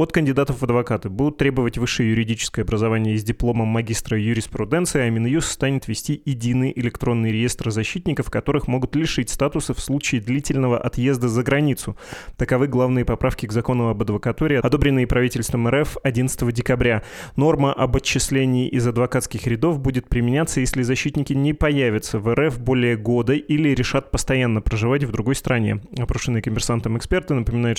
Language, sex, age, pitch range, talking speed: Russian, male, 20-39, 115-135 Hz, 150 wpm